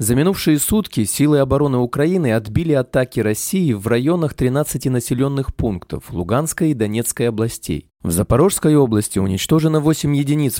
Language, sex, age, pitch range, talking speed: Russian, male, 20-39, 110-150 Hz, 135 wpm